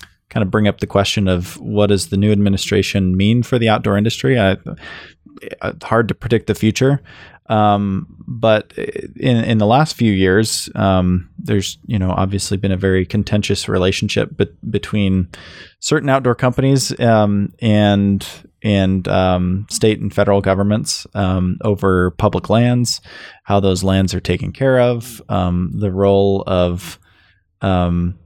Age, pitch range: 20-39, 95-110 Hz